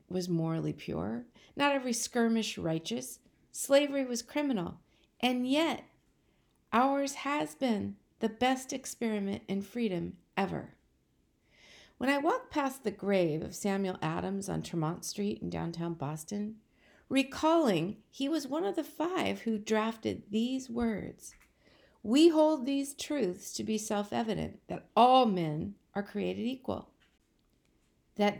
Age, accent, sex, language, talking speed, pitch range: 50-69, American, female, English, 130 wpm, 195-270 Hz